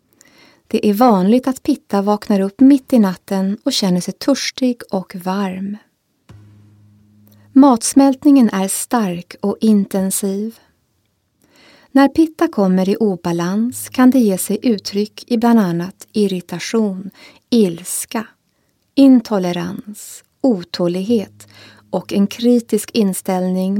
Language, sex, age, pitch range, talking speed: Swedish, female, 30-49, 185-240 Hz, 105 wpm